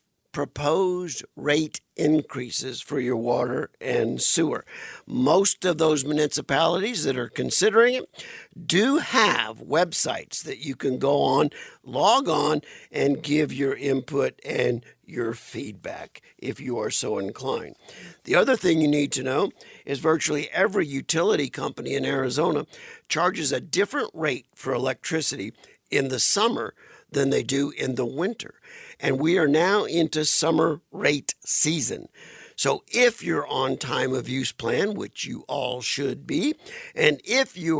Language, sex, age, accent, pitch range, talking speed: English, male, 50-69, American, 135-190 Hz, 145 wpm